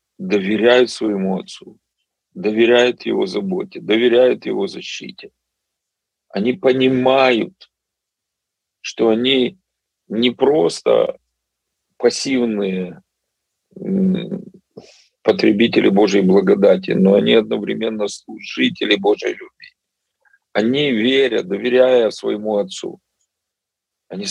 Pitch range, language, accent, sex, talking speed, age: 105-175 Hz, Russian, native, male, 75 wpm, 40-59